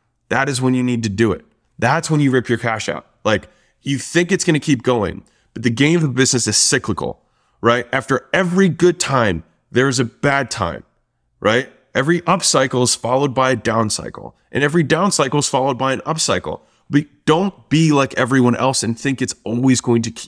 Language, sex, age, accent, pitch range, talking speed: English, male, 20-39, American, 115-145 Hz, 215 wpm